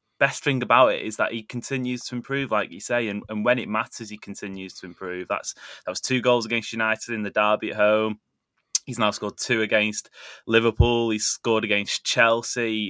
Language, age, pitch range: English, 20-39, 100-120 Hz